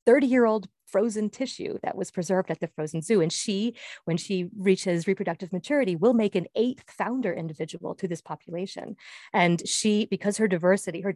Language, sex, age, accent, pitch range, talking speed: English, female, 30-49, American, 175-230 Hz, 170 wpm